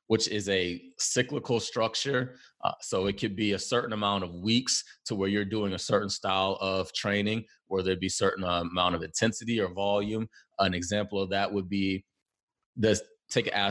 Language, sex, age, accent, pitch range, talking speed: English, male, 30-49, American, 95-115 Hz, 185 wpm